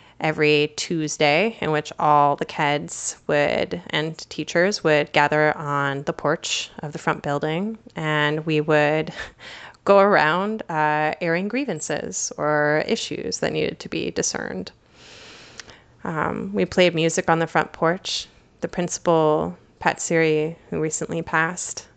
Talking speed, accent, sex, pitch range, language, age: 135 wpm, American, female, 155-180 Hz, English, 20-39